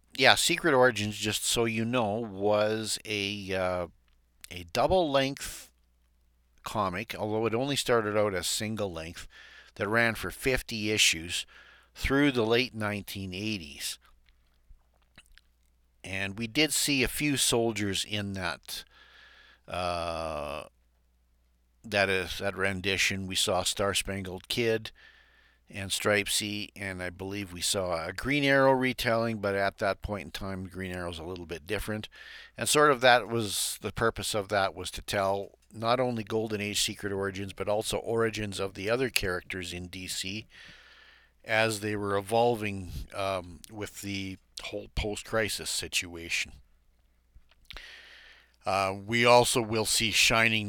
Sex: male